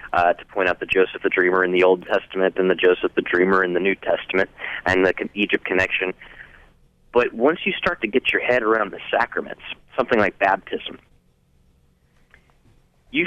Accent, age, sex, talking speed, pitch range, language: American, 30-49, male, 180 wpm, 90-105 Hz, English